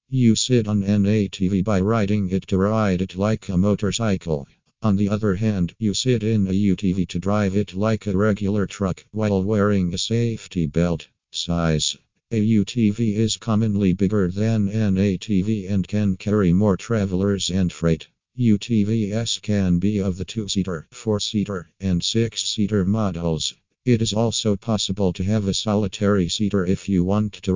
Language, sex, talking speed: English, male, 160 wpm